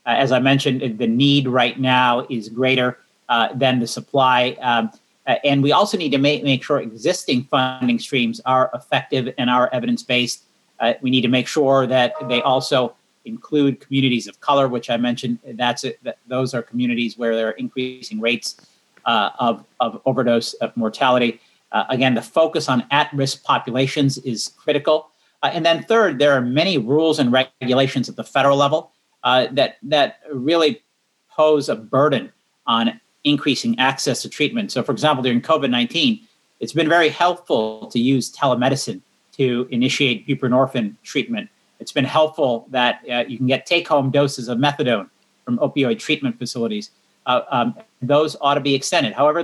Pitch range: 125-145 Hz